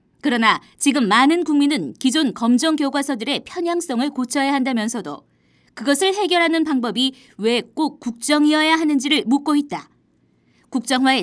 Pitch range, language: 250-305 Hz, Korean